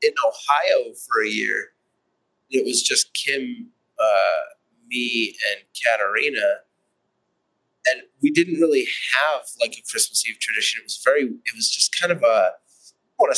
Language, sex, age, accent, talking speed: English, male, 30-49, American, 150 wpm